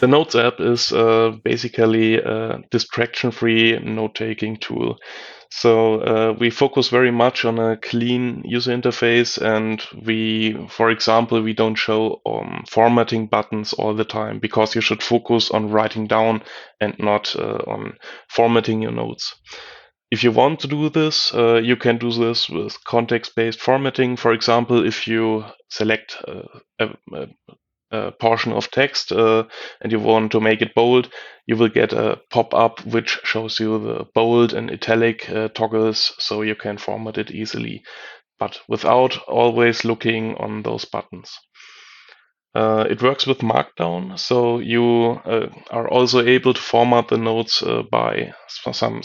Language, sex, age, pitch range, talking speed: English, male, 20-39, 110-120 Hz, 160 wpm